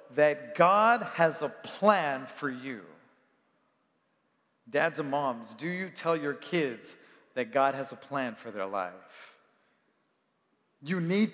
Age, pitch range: 40-59, 135-215 Hz